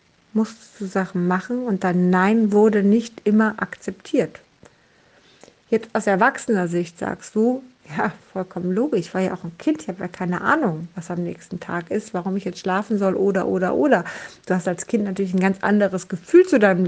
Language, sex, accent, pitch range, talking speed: German, female, German, 195-245 Hz, 195 wpm